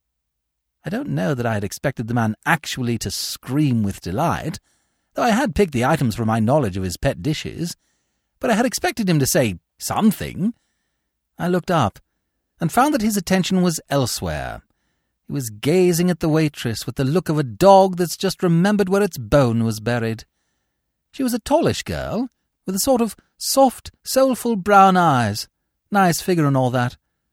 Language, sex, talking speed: English, male, 180 wpm